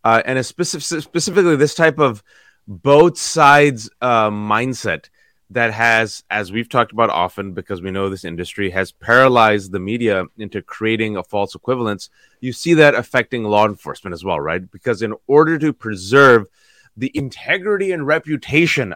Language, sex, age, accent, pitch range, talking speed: English, male, 30-49, American, 115-155 Hz, 160 wpm